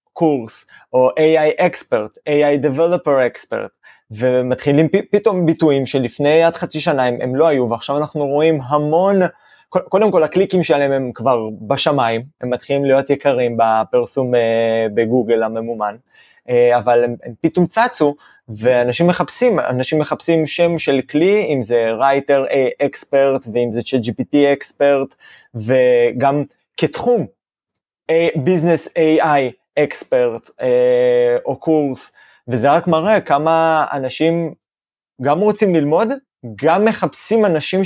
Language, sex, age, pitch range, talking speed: Hebrew, male, 20-39, 130-185 Hz, 120 wpm